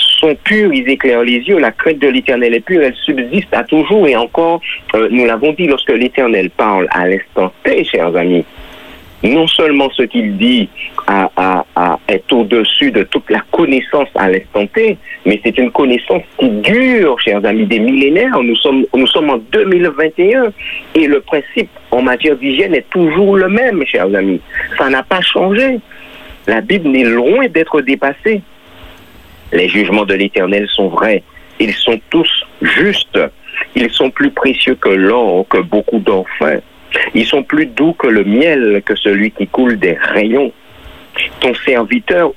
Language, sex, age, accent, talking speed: French, male, 50-69, French, 170 wpm